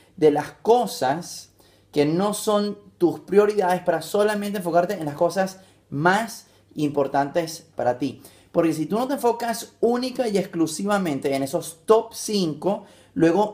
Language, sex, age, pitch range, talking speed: English, male, 30-49, 145-200 Hz, 140 wpm